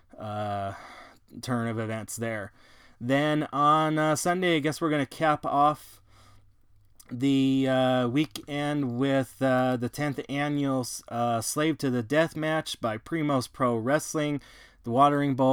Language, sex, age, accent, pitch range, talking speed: English, male, 20-39, American, 115-145 Hz, 145 wpm